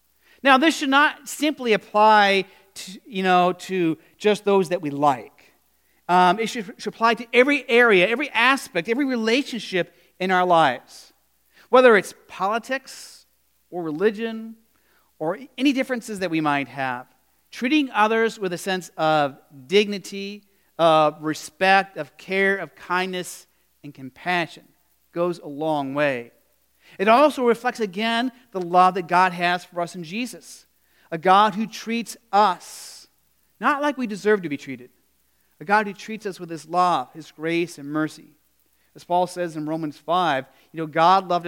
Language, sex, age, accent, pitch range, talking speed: English, male, 40-59, American, 155-210 Hz, 155 wpm